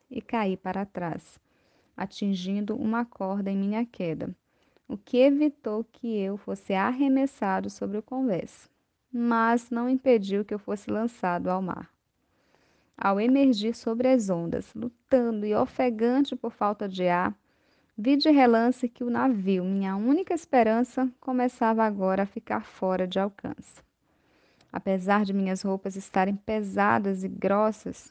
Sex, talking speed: female, 140 wpm